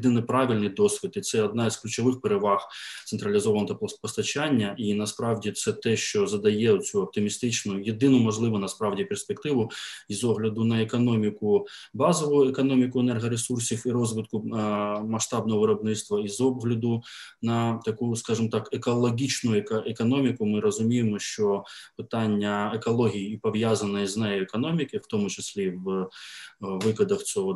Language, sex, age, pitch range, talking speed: Ukrainian, male, 20-39, 110-135 Hz, 125 wpm